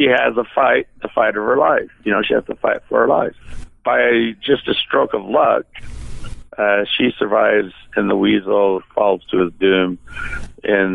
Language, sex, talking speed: English, male, 190 wpm